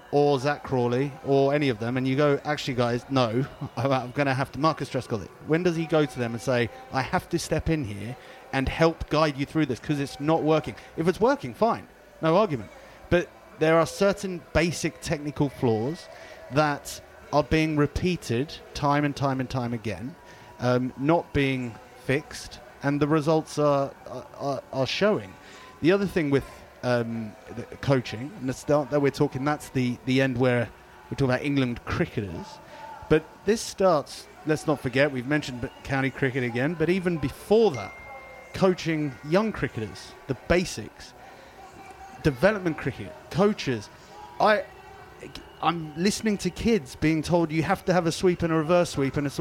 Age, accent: 30-49, British